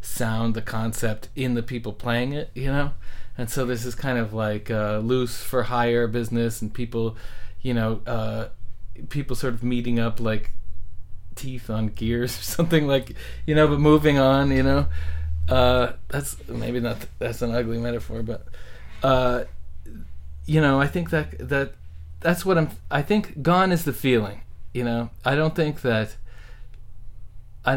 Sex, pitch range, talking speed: male, 105-125 Hz, 175 wpm